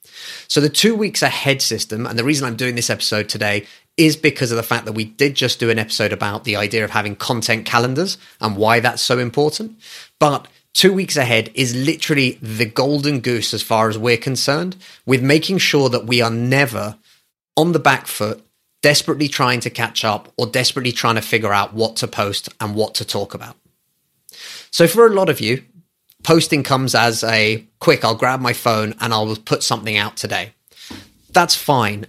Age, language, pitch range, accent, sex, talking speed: 30-49, English, 110-145 Hz, British, male, 195 wpm